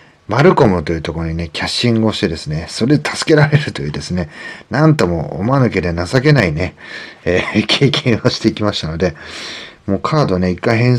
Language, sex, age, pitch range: Japanese, male, 40-59, 90-125 Hz